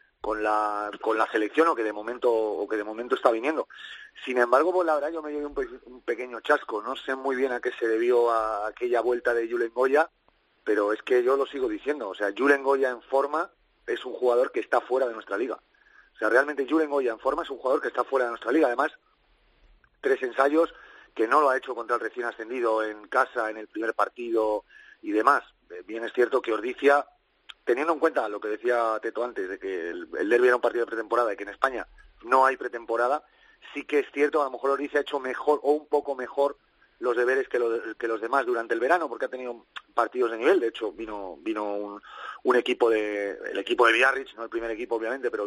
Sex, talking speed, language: male, 235 wpm, Spanish